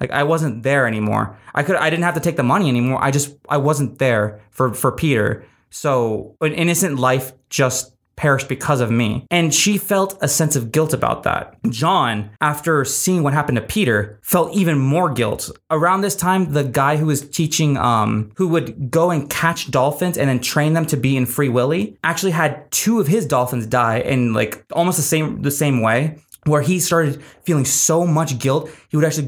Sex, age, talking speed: male, 20-39, 205 wpm